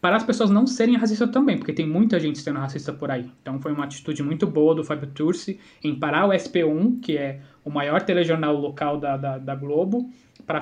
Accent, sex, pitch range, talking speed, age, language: Brazilian, male, 145-200 Hz, 220 wpm, 20-39, Portuguese